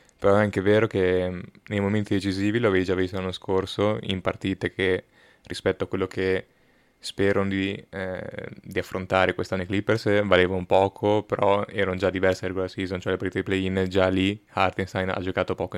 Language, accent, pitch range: Italian, native, 95-100 Hz